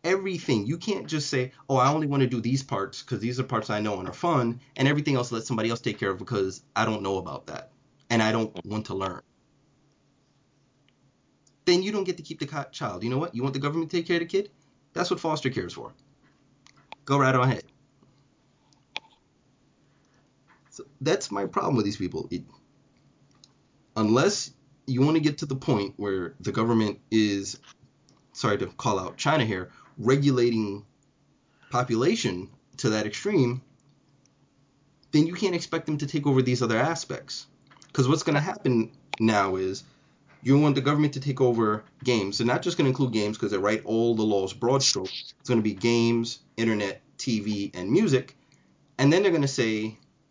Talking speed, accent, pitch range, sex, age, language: 190 wpm, American, 110-145 Hz, male, 30-49, English